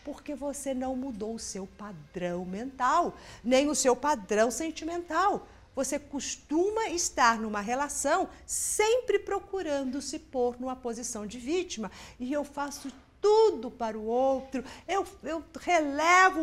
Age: 50-69